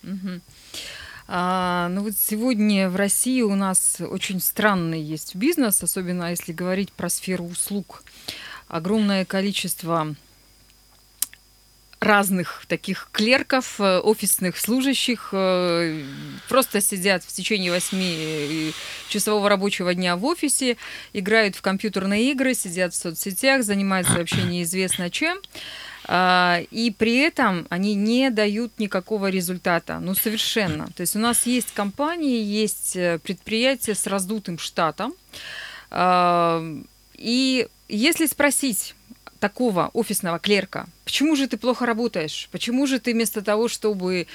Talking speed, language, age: 110 wpm, Russian, 20-39